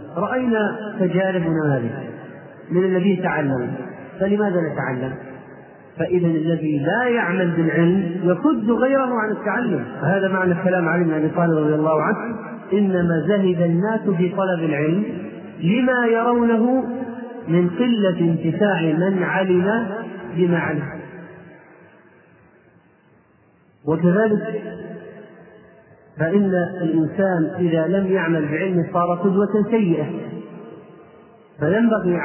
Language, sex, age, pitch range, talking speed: Arabic, male, 40-59, 160-195 Hz, 90 wpm